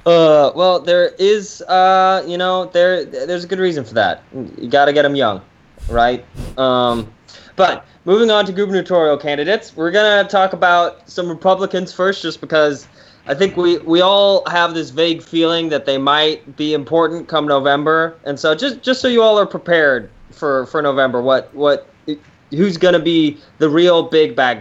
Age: 20-39